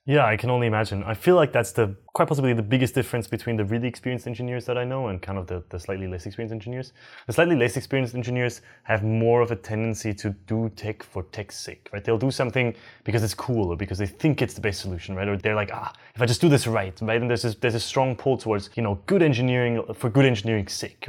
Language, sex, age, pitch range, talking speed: English, male, 20-39, 110-150 Hz, 260 wpm